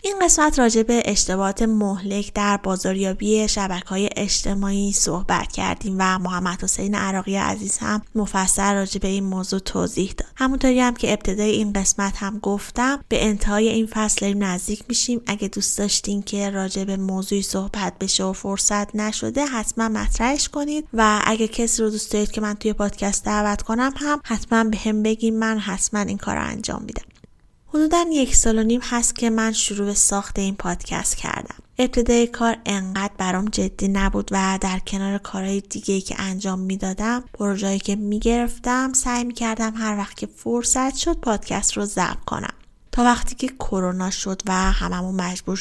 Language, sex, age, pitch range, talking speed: Persian, female, 20-39, 195-225 Hz, 160 wpm